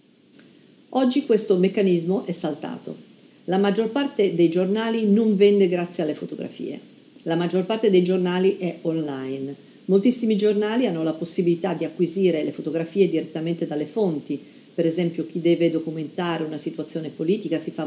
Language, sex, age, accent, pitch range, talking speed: Italian, female, 50-69, native, 155-200 Hz, 150 wpm